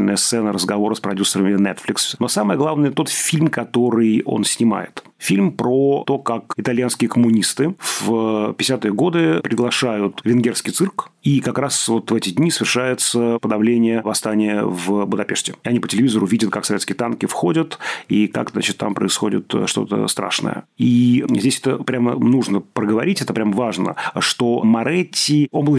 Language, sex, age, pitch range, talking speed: Russian, male, 30-49, 110-140 Hz, 155 wpm